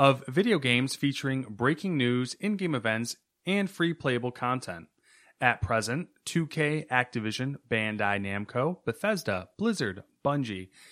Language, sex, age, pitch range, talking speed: English, male, 30-49, 115-150 Hz, 115 wpm